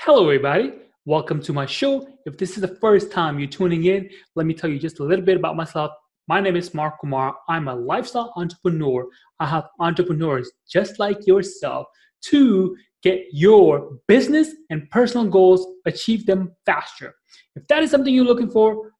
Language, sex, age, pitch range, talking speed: English, male, 30-49, 150-220 Hz, 180 wpm